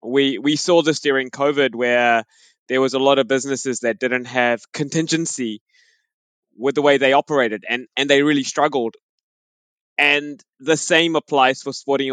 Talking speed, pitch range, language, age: 165 wpm, 130-155 Hz, English, 20-39